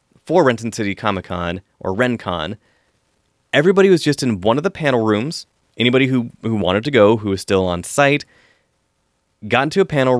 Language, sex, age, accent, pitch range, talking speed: English, male, 30-49, American, 110-150 Hz, 180 wpm